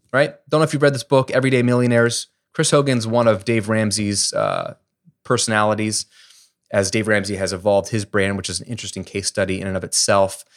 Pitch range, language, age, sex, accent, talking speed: 100-135 Hz, English, 30-49, male, American, 200 wpm